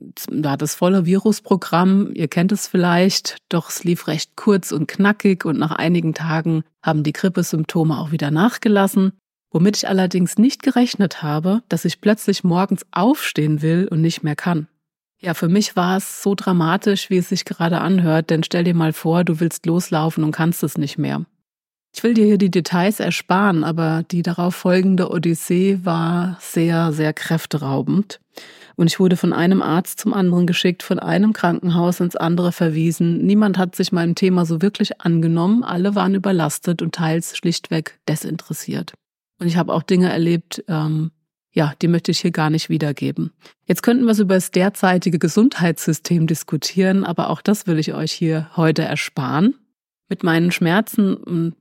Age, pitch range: 30-49, 160-190 Hz